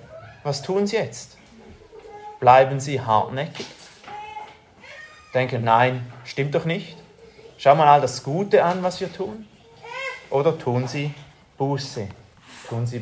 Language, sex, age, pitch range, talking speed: German, male, 30-49, 125-155 Hz, 115 wpm